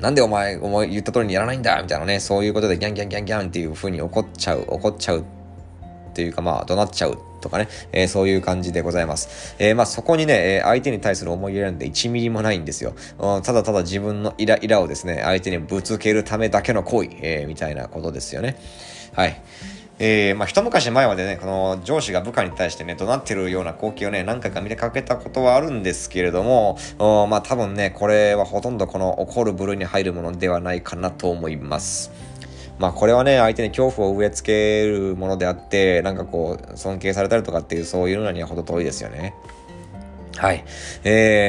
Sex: male